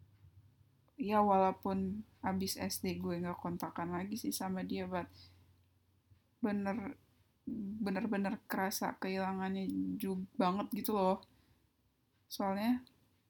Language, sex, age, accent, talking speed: Indonesian, female, 10-29, native, 100 wpm